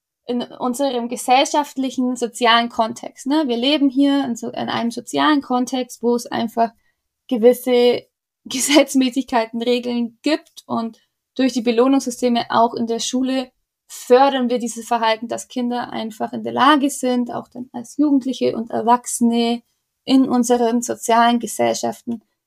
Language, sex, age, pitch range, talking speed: German, female, 20-39, 235-280 Hz, 130 wpm